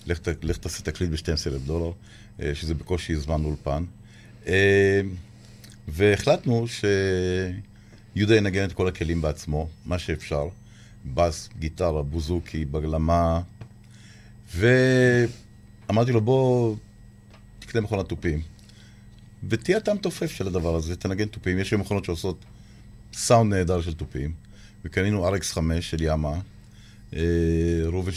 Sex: male